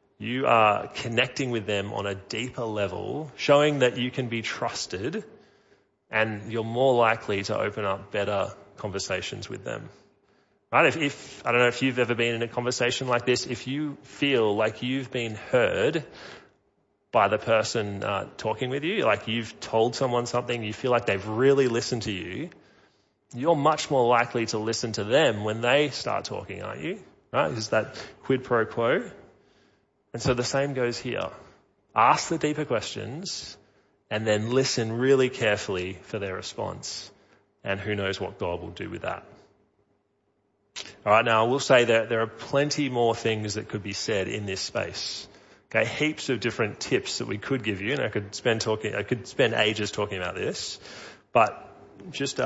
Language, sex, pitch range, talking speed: English, male, 105-130 Hz, 180 wpm